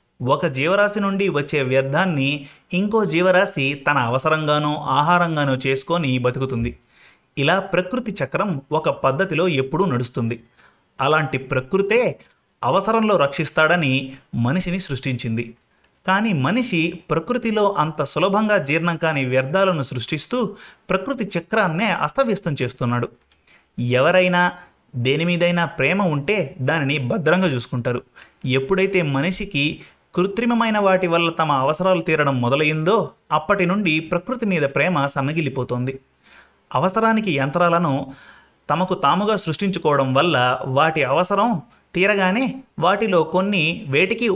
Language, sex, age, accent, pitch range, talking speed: Telugu, male, 30-49, native, 135-185 Hz, 100 wpm